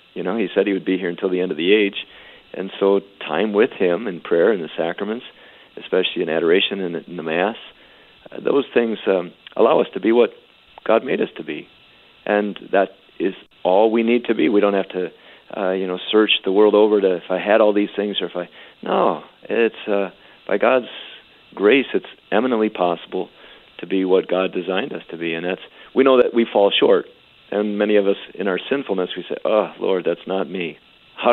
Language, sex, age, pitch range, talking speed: English, male, 50-69, 95-110 Hz, 220 wpm